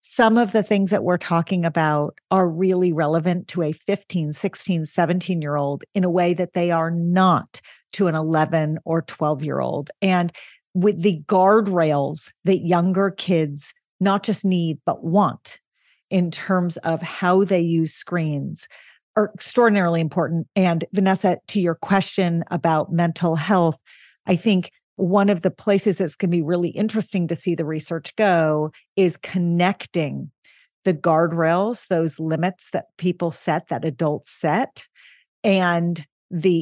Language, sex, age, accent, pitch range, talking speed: English, female, 40-59, American, 160-195 Hz, 145 wpm